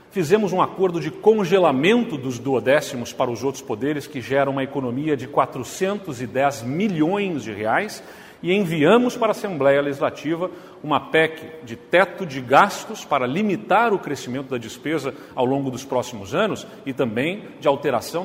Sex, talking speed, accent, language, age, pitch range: male, 155 wpm, Brazilian, Portuguese, 40-59, 140-190 Hz